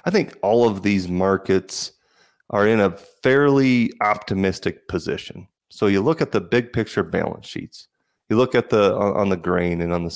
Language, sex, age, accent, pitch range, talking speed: English, male, 30-49, American, 90-110 Hz, 185 wpm